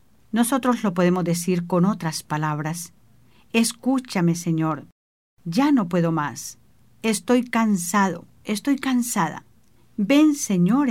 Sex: female